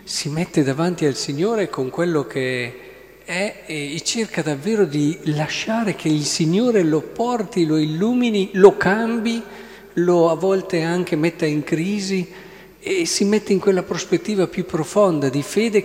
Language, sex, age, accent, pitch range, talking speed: Italian, male, 50-69, native, 130-185 Hz, 150 wpm